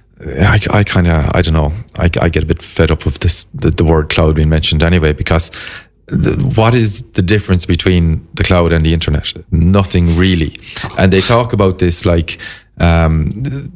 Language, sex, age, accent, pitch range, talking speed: English, male, 30-49, Irish, 85-100 Hz, 185 wpm